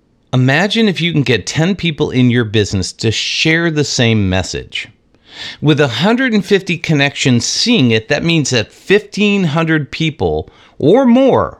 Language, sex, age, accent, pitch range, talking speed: English, male, 50-69, American, 105-160 Hz, 140 wpm